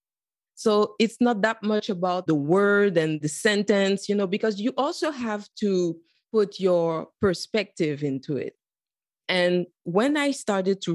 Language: English